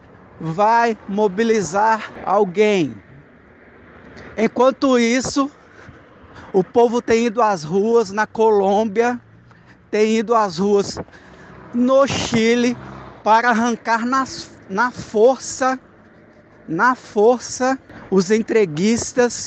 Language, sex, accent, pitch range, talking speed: Portuguese, male, Brazilian, 205-240 Hz, 85 wpm